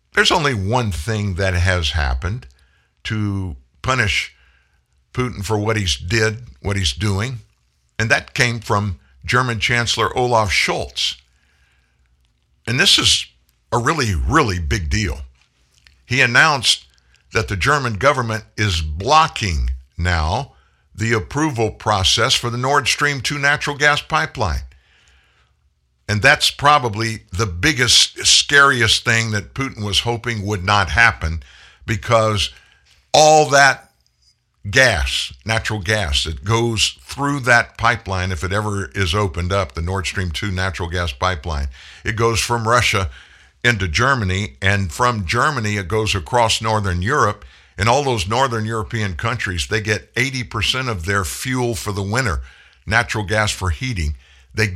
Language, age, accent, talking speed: English, 60-79, American, 135 wpm